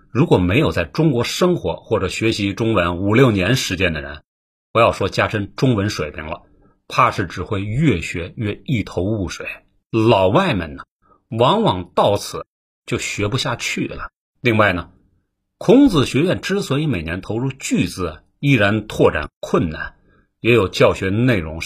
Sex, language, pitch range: male, Chinese, 95-145 Hz